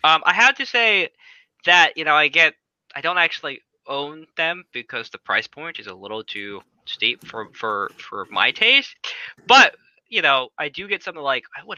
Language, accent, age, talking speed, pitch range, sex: English, American, 20-39, 195 wpm, 125-165 Hz, male